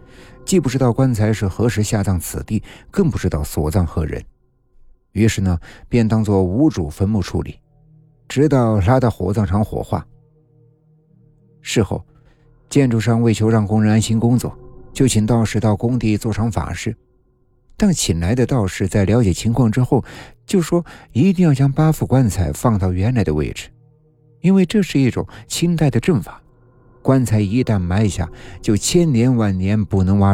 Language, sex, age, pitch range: Chinese, male, 60-79, 105-135 Hz